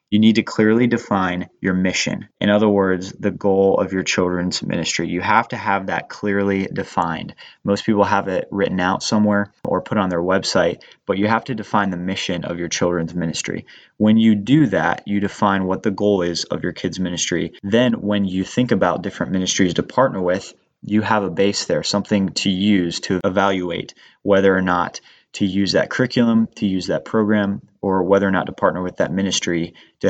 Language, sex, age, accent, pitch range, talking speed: English, male, 20-39, American, 90-105 Hz, 200 wpm